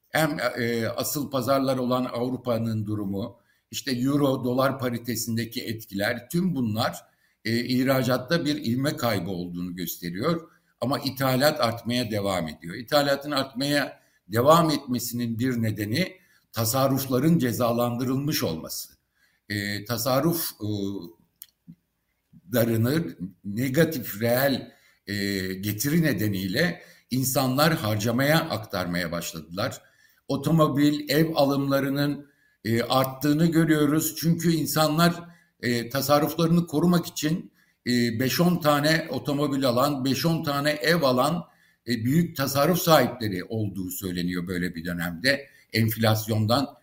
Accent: native